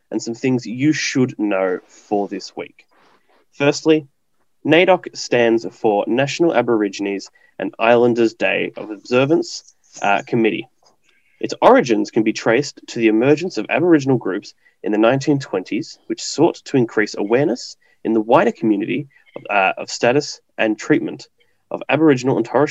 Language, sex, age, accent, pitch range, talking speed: English, male, 10-29, Australian, 110-150 Hz, 145 wpm